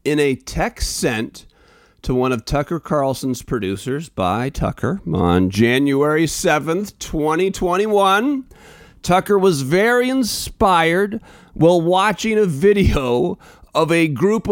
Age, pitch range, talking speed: 40-59, 145-220 Hz, 110 wpm